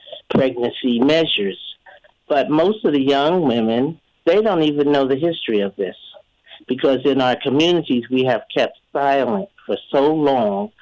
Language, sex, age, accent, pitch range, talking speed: English, male, 50-69, American, 115-140 Hz, 150 wpm